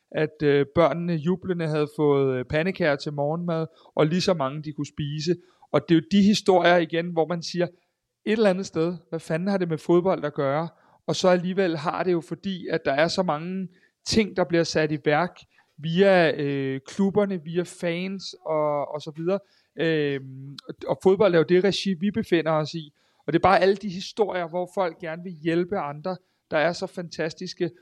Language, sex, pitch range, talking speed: Danish, male, 150-175 Hz, 195 wpm